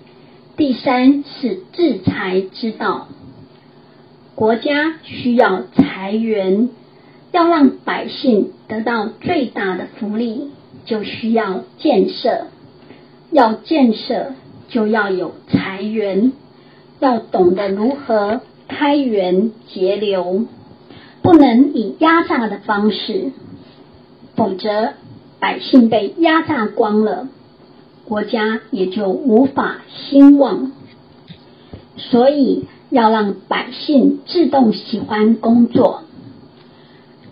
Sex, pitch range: male, 205-275 Hz